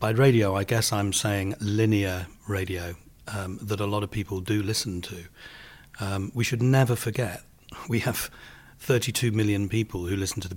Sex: male